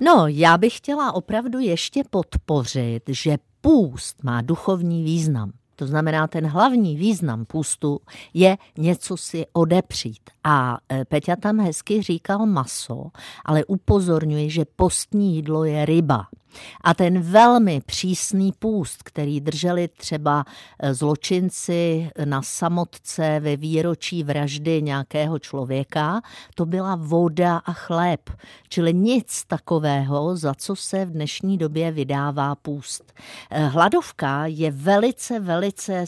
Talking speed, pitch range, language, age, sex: 120 wpm, 145-185 Hz, Czech, 50-69, female